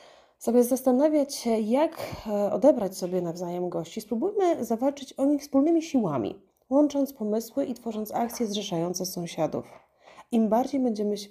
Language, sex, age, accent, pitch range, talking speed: Polish, female, 30-49, native, 185-240 Hz, 125 wpm